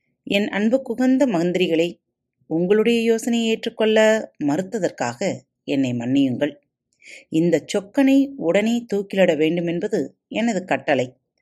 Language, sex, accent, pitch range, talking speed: Tamil, female, native, 150-250 Hz, 95 wpm